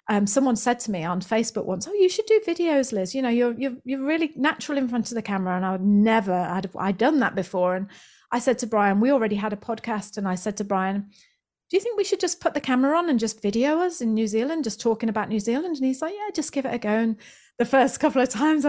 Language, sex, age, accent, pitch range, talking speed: English, female, 30-49, British, 200-265 Hz, 280 wpm